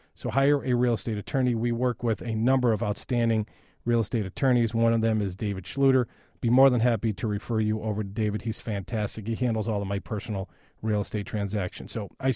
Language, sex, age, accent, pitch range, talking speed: English, male, 40-59, American, 110-135 Hz, 225 wpm